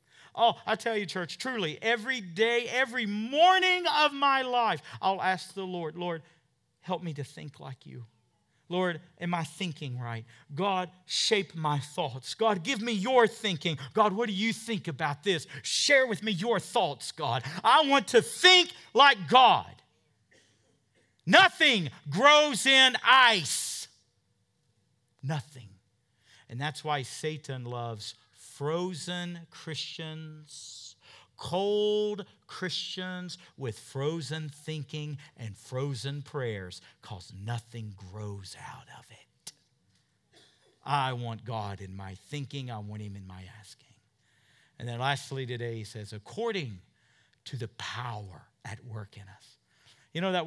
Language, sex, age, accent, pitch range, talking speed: English, male, 50-69, American, 120-185 Hz, 135 wpm